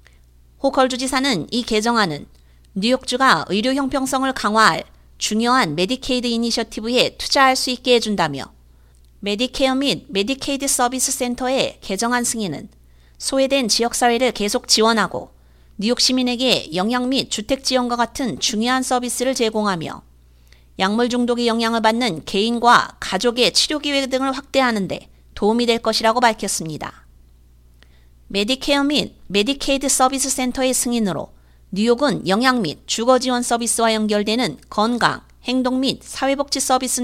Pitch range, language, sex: 195-255 Hz, Korean, female